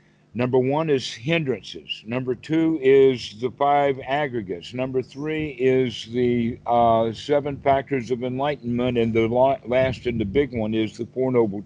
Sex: male